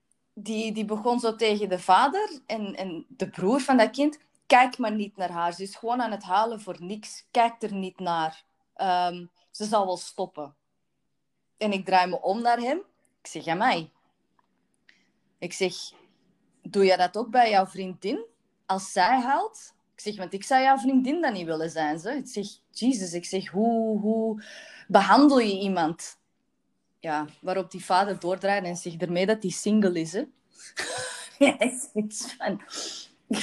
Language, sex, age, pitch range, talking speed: Dutch, female, 20-39, 185-230 Hz, 170 wpm